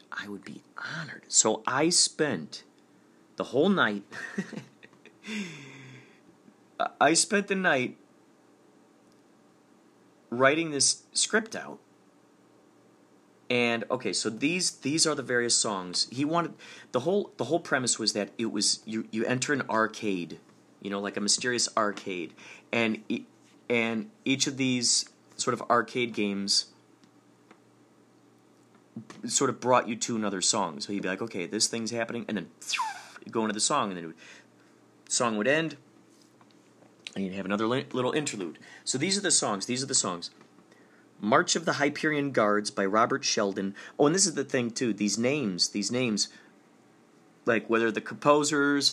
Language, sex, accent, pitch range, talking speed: English, male, American, 105-140 Hz, 155 wpm